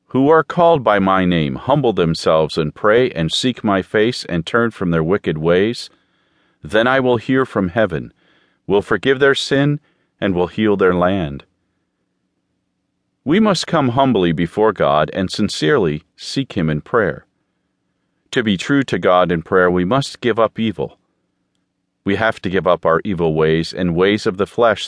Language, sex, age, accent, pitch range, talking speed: English, male, 40-59, American, 85-125 Hz, 175 wpm